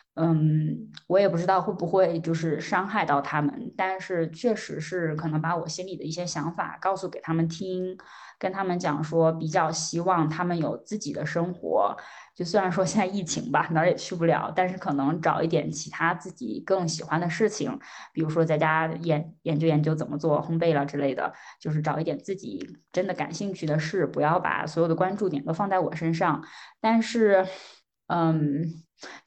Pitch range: 160-195 Hz